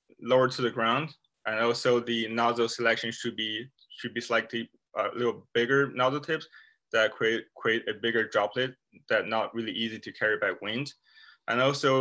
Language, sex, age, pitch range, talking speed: English, male, 20-39, 110-135 Hz, 180 wpm